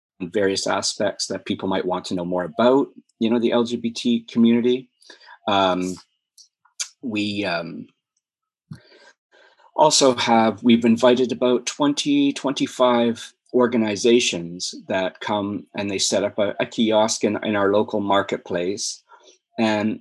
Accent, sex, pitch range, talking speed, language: American, male, 95-120 Hz, 125 wpm, English